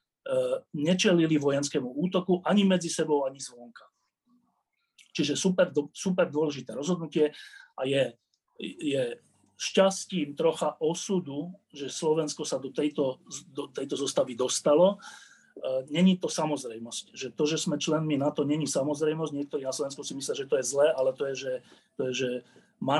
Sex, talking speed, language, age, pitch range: male, 150 wpm, Slovak, 40-59, 135-180 Hz